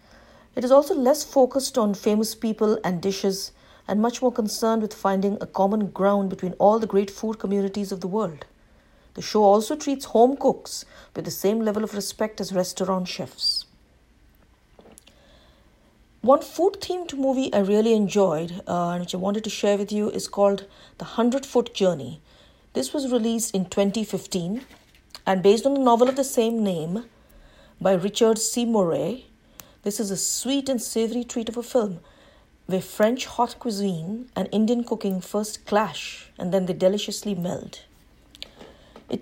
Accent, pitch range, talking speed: Indian, 195-235 Hz, 165 wpm